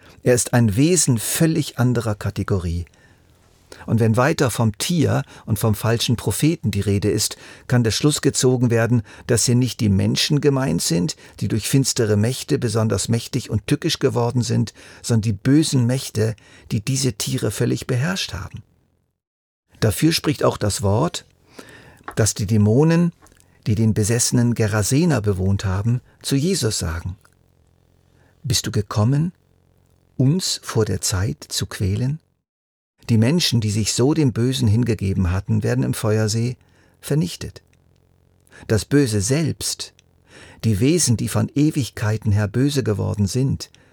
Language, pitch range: German, 100-130 Hz